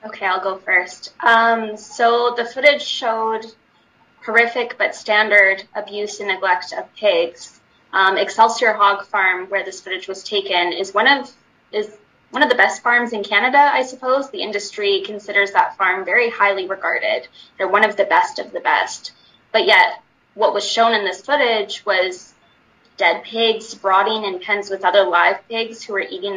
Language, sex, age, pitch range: German, female, 10-29, 195-235 Hz